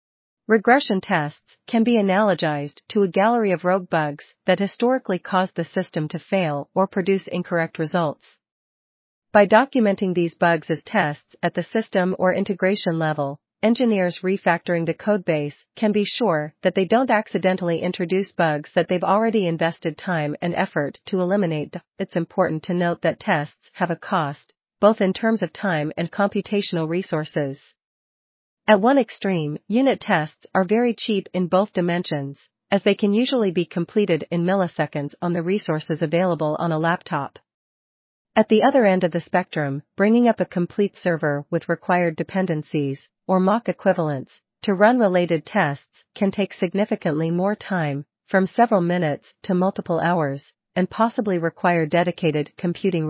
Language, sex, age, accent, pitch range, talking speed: English, female, 40-59, American, 165-200 Hz, 155 wpm